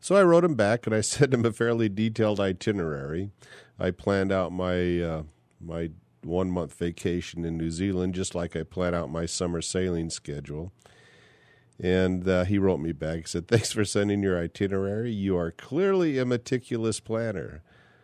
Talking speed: 175 wpm